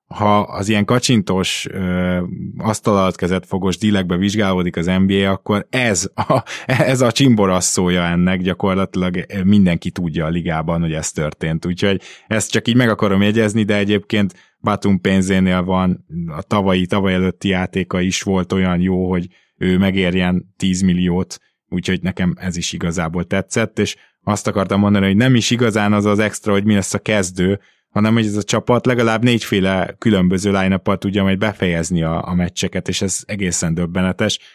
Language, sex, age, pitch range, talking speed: Hungarian, male, 20-39, 90-105 Hz, 160 wpm